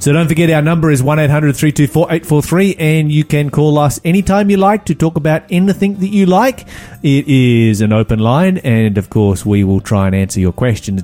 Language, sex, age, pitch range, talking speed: English, male, 30-49, 110-150 Hz, 200 wpm